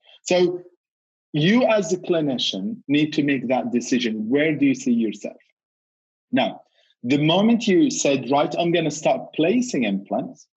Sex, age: male, 40-59